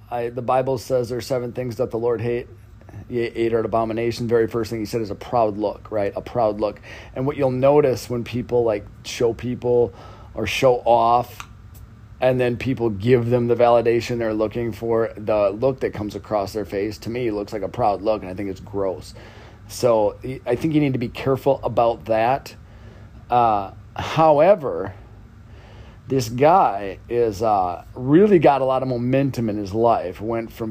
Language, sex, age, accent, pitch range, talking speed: English, male, 30-49, American, 105-120 Hz, 190 wpm